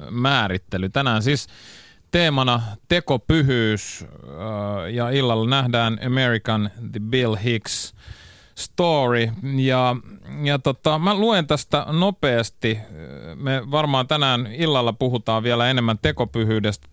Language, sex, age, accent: Finnish, male, 30-49, native